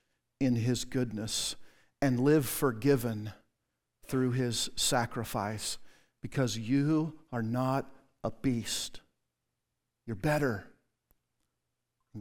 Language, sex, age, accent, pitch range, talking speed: English, male, 50-69, American, 115-140 Hz, 90 wpm